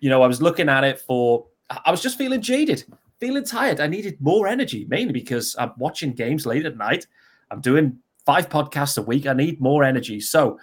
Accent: British